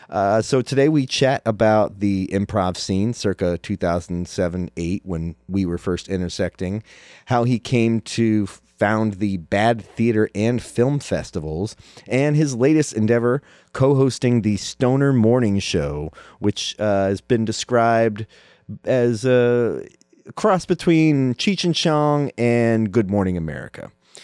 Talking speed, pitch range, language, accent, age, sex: 130 wpm, 100-130 Hz, English, American, 30-49, male